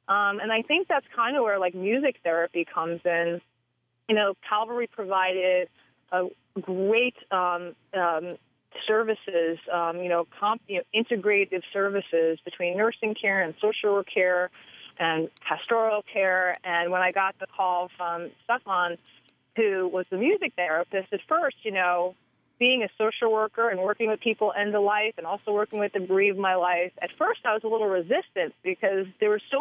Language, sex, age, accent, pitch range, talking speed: English, female, 30-49, American, 180-220 Hz, 175 wpm